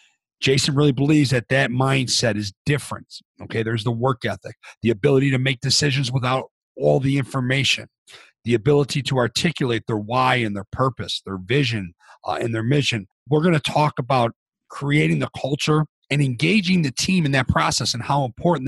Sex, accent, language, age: male, American, English, 40-59